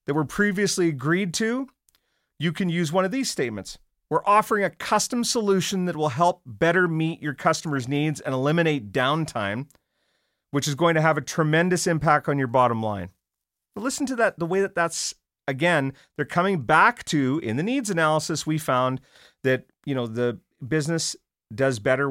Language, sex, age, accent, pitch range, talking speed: English, male, 40-59, American, 140-180 Hz, 180 wpm